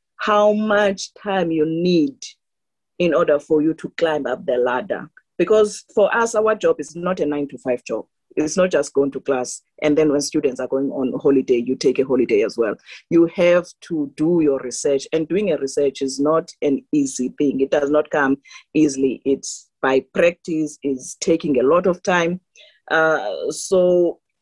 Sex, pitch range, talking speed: female, 140-185 Hz, 190 wpm